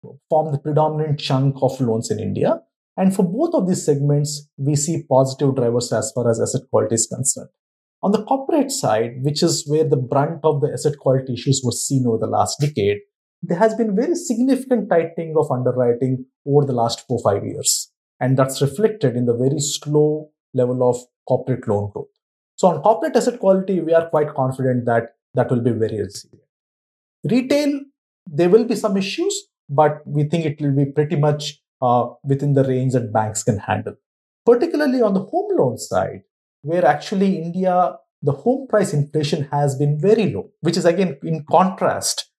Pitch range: 130-195 Hz